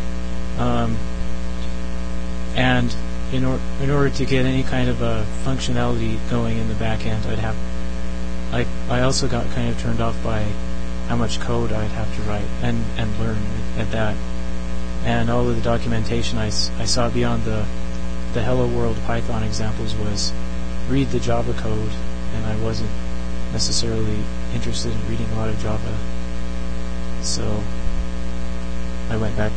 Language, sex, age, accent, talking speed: English, male, 30-49, American, 155 wpm